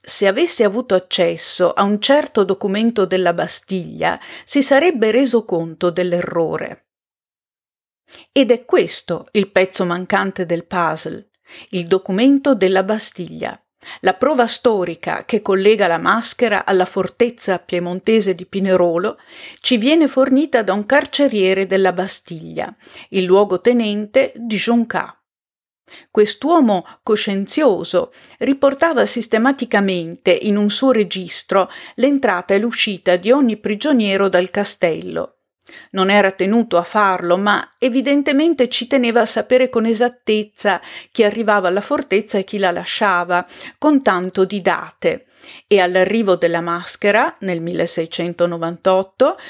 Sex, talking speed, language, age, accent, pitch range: female, 120 wpm, Italian, 50-69, native, 185-245 Hz